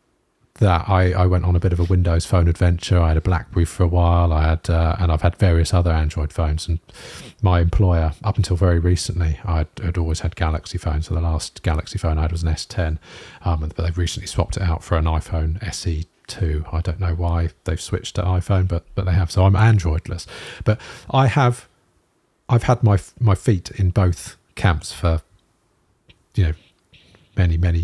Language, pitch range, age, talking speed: English, 85-100 Hz, 40-59, 205 wpm